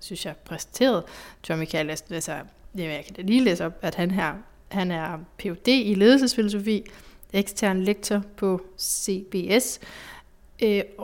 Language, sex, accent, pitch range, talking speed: Danish, female, native, 185-210 Hz, 140 wpm